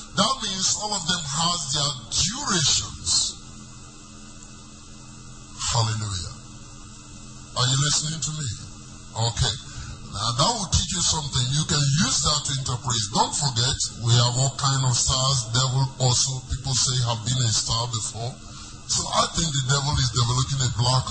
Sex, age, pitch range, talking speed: male, 30-49, 115-150 Hz, 150 wpm